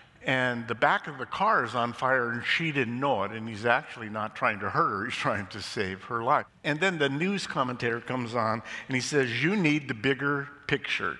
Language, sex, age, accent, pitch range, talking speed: English, male, 50-69, American, 115-145 Hz, 230 wpm